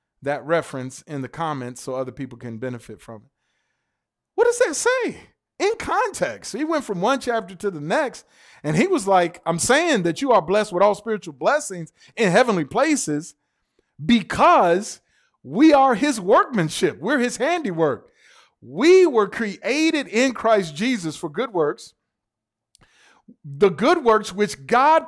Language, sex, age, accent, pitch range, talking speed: English, male, 40-59, American, 165-260 Hz, 155 wpm